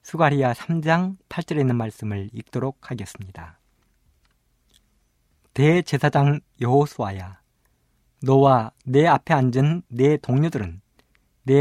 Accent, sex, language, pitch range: native, male, Korean, 90-150 Hz